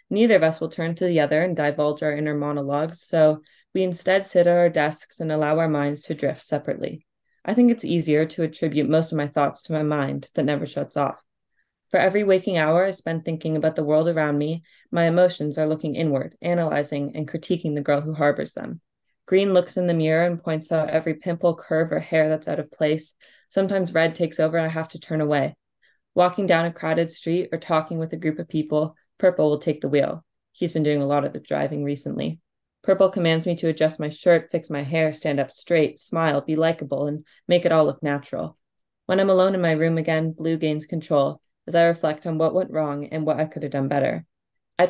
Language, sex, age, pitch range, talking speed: English, female, 20-39, 150-170 Hz, 225 wpm